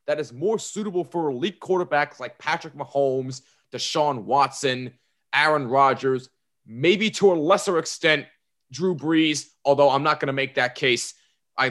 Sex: male